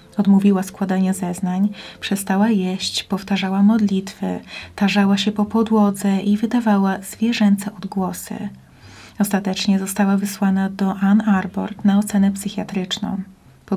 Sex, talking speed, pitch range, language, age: female, 110 wpm, 195-210 Hz, Polish, 30-49